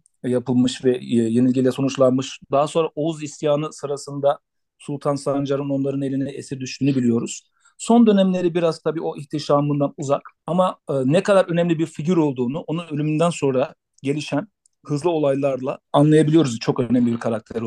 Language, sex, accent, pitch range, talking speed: Turkish, male, native, 130-155 Hz, 140 wpm